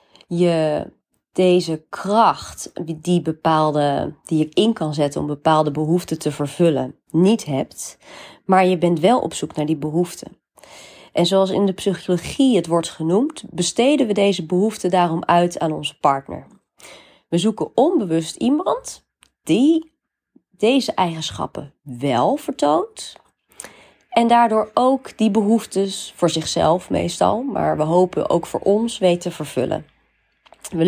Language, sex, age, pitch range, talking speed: Dutch, female, 30-49, 155-195 Hz, 135 wpm